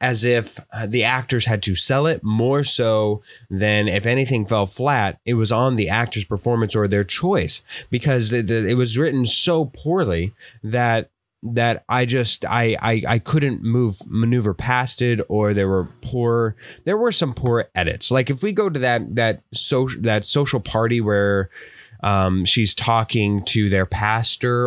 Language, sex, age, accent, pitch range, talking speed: English, male, 20-39, American, 100-130 Hz, 170 wpm